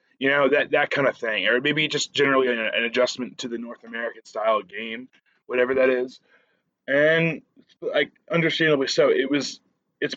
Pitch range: 120-195 Hz